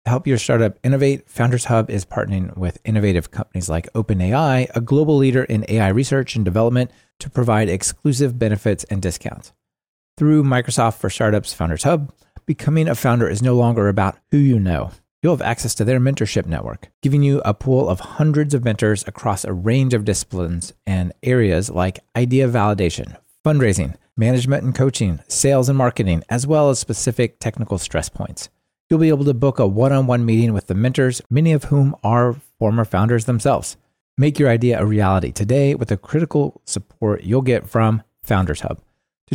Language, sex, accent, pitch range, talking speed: English, male, American, 100-130 Hz, 175 wpm